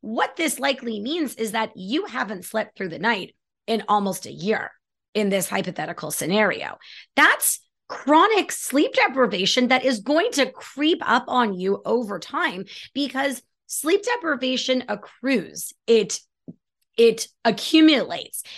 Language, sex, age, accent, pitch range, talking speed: English, female, 30-49, American, 205-265 Hz, 130 wpm